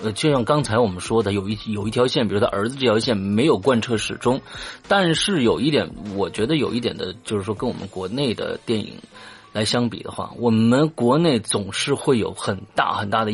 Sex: male